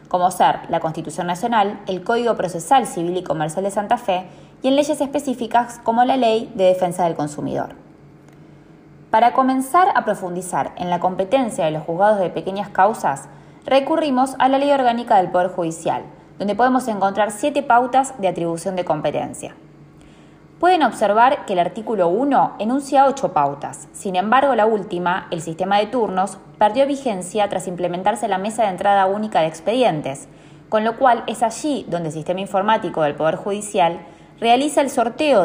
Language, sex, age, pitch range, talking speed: Spanish, female, 20-39, 175-250 Hz, 165 wpm